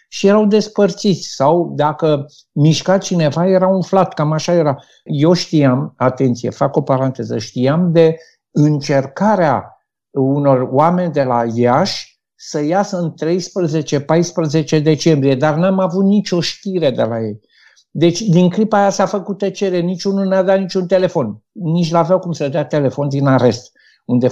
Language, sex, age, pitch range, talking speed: Romanian, male, 60-79, 150-195 Hz, 150 wpm